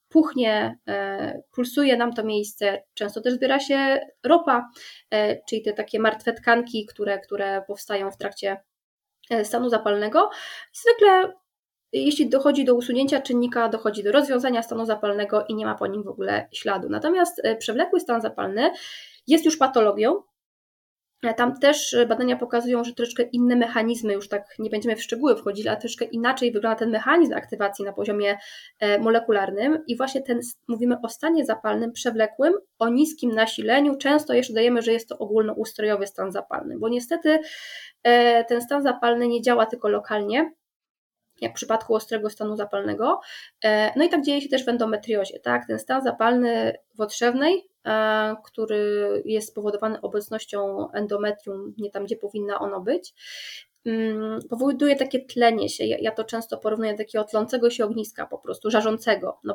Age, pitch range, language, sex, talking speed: 20-39, 215-255 Hz, Polish, female, 150 wpm